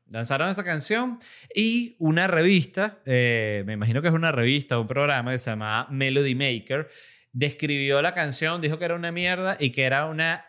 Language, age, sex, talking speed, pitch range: Spanish, 30-49, male, 185 wpm, 120-165 Hz